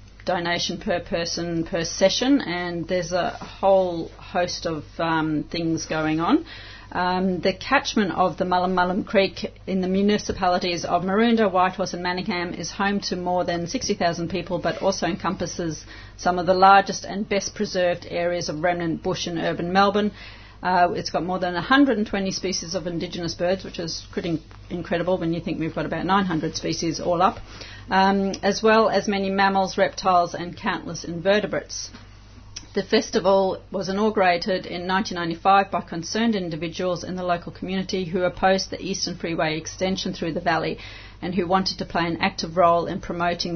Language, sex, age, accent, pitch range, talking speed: English, female, 40-59, Australian, 170-195 Hz, 165 wpm